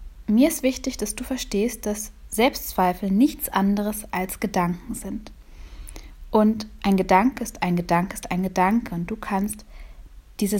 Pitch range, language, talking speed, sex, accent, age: 180-220 Hz, German, 145 wpm, female, German, 20-39